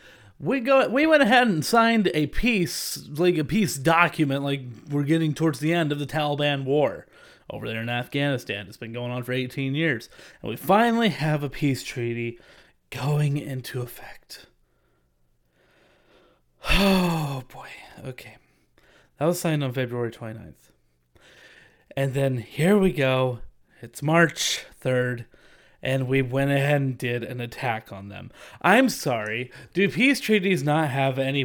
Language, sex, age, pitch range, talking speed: English, male, 30-49, 130-195 Hz, 150 wpm